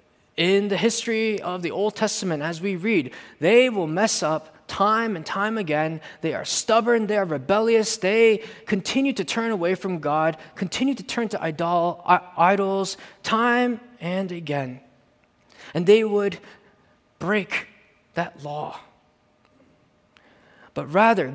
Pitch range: 165-225 Hz